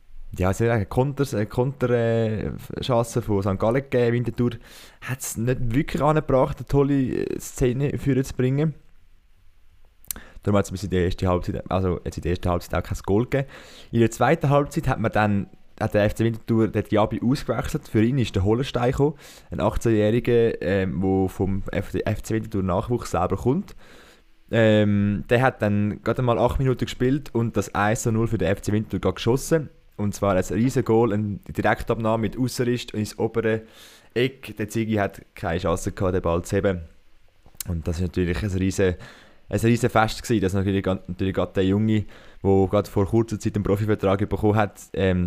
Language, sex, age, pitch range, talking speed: German, male, 20-39, 95-120 Hz, 170 wpm